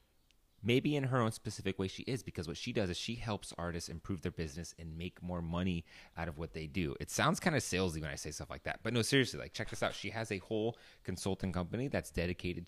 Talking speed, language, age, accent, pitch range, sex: 255 wpm, English, 30-49, American, 85-110 Hz, male